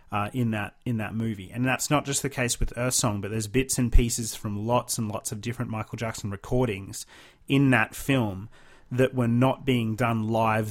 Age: 30-49